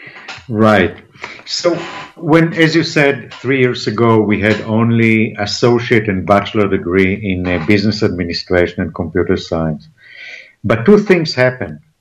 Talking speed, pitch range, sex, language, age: 135 wpm, 105-145 Hz, male, English, 50-69